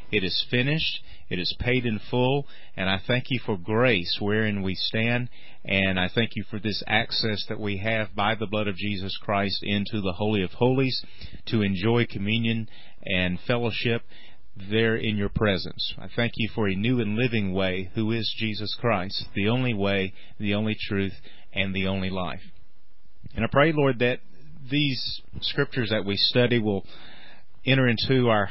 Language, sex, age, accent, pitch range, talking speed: English, male, 40-59, American, 100-115 Hz, 175 wpm